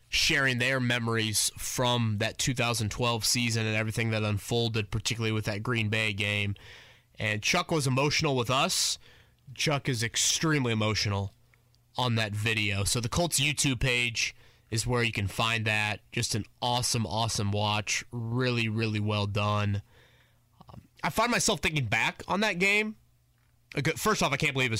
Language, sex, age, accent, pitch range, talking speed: English, male, 20-39, American, 115-130 Hz, 155 wpm